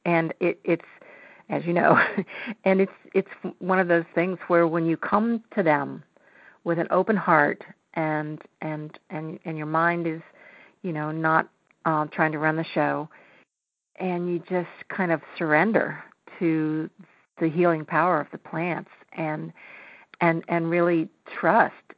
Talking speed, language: 155 wpm, English